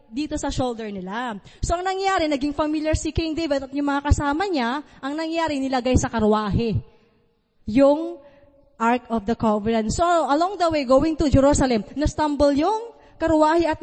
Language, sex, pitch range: English, female, 235-300 Hz